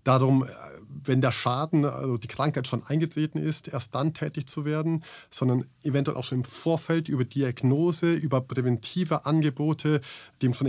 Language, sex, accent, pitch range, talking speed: German, male, German, 130-155 Hz, 155 wpm